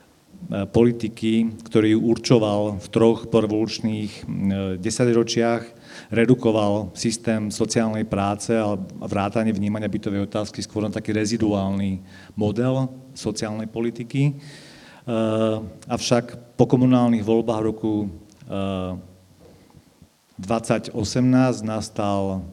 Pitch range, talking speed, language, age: 100-115 Hz, 80 wpm, Slovak, 40-59